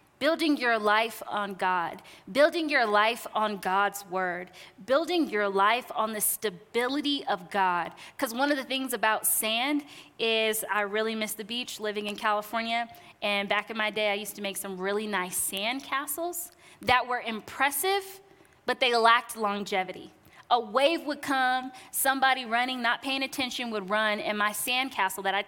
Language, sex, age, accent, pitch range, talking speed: English, female, 20-39, American, 205-265 Hz, 170 wpm